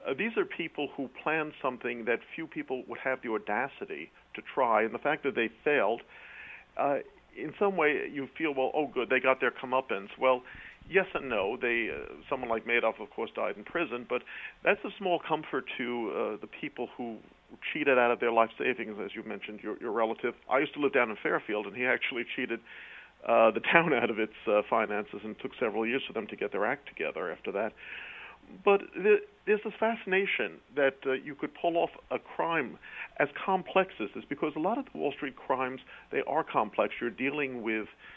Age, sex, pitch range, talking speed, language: 50-69, male, 115-160 Hz, 210 wpm, English